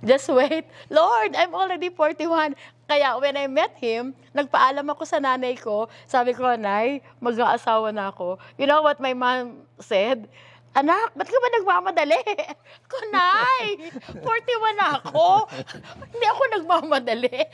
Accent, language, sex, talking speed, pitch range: native, Filipino, female, 135 wpm, 200-280 Hz